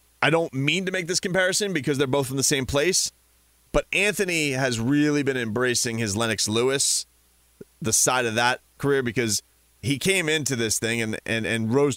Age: 30-49